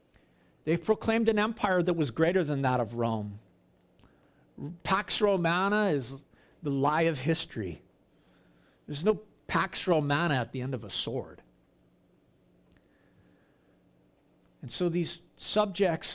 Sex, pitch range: male, 120-195 Hz